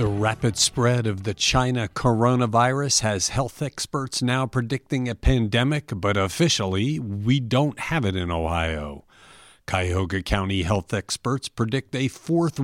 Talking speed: 140 wpm